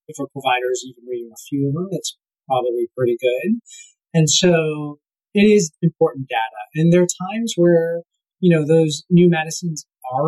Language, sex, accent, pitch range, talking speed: English, male, American, 130-175 Hz, 180 wpm